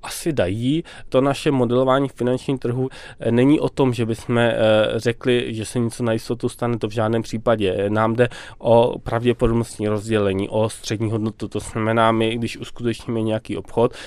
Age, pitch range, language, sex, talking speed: 20-39, 110-125 Hz, Czech, male, 165 wpm